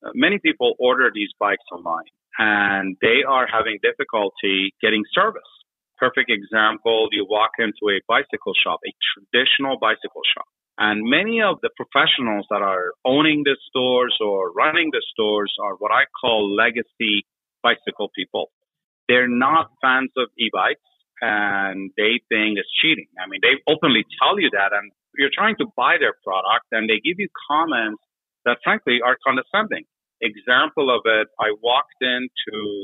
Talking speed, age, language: 155 wpm, 40-59, English